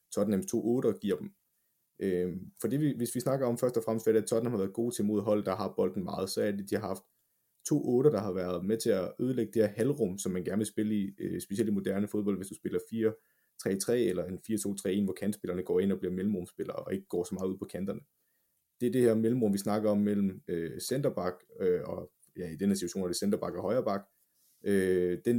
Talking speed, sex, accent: 235 wpm, male, native